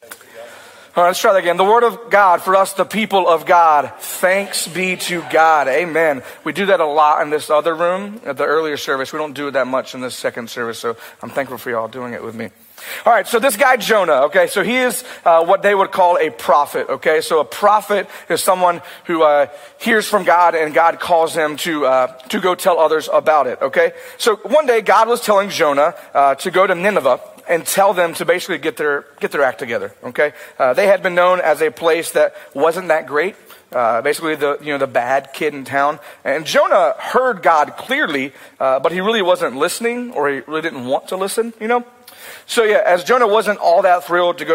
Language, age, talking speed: English, 40-59, 230 wpm